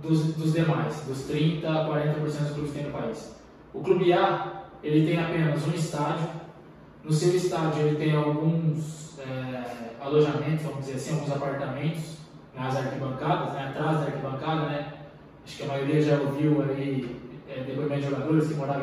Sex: male